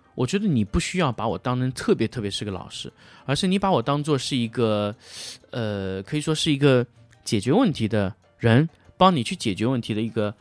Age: 20-39